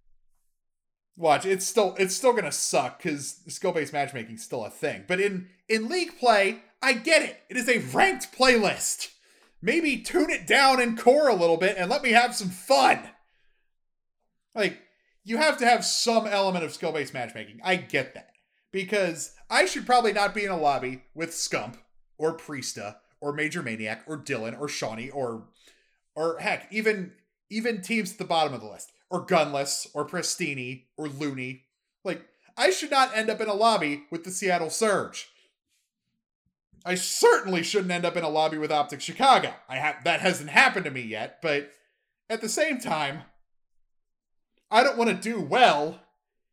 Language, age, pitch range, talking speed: English, 30-49, 150-220 Hz, 180 wpm